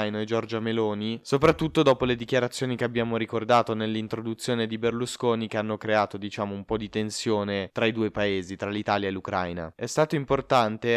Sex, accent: male, native